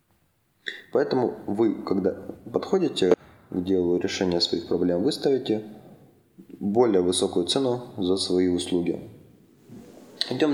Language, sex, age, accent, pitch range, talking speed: Russian, male, 20-39, native, 95-110 Hz, 95 wpm